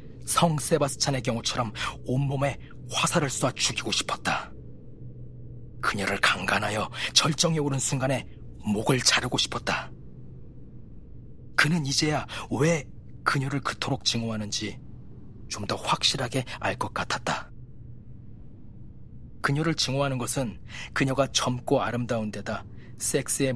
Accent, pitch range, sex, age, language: native, 115-140 Hz, male, 40-59, Korean